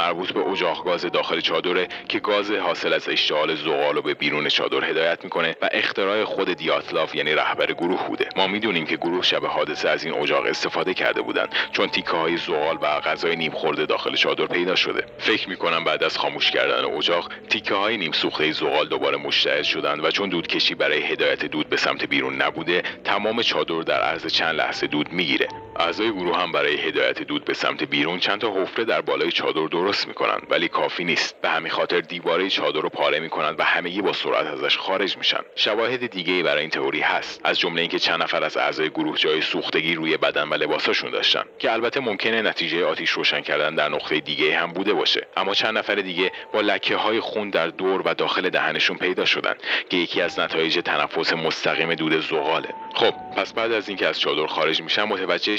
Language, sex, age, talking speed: Persian, male, 40-59, 195 wpm